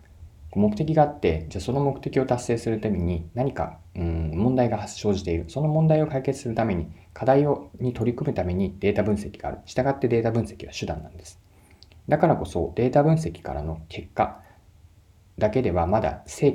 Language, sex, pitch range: Japanese, male, 85-115 Hz